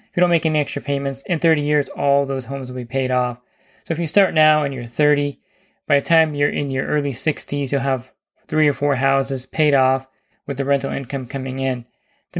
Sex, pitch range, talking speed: male, 135-150 Hz, 225 wpm